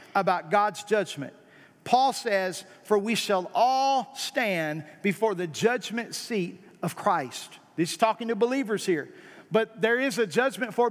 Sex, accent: male, American